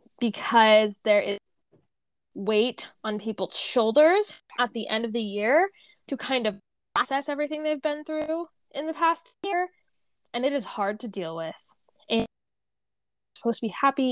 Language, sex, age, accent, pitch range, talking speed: English, female, 10-29, American, 210-275 Hz, 160 wpm